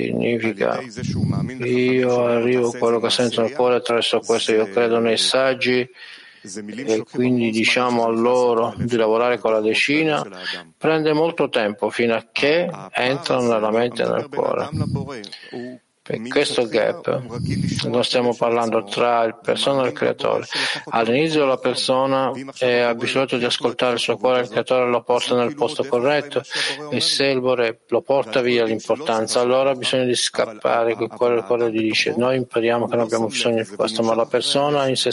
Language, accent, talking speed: Italian, native, 170 wpm